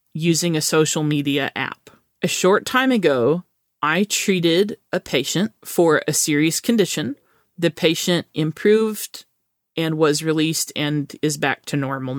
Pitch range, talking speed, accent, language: 150-180 Hz, 140 wpm, American, English